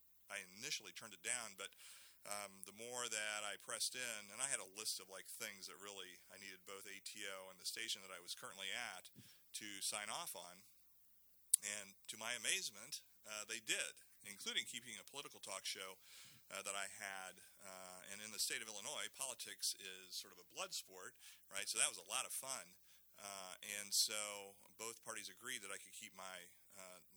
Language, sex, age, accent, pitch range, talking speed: English, male, 40-59, American, 95-110 Hz, 200 wpm